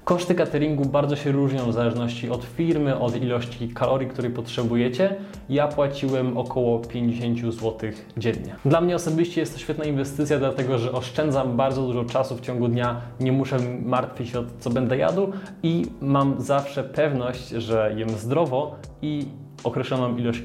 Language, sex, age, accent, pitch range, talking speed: Polish, male, 20-39, native, 115-140 Hz, 160 wpm